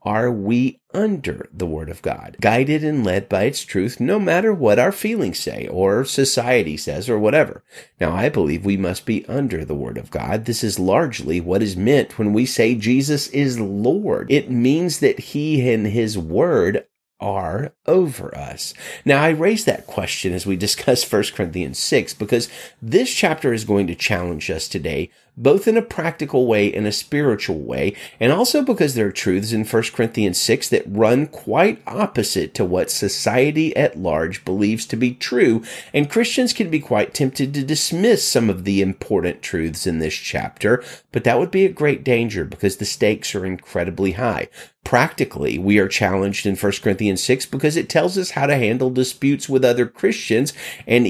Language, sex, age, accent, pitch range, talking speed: English, male, 40-59, American, 95-140 Hz, 185 wpm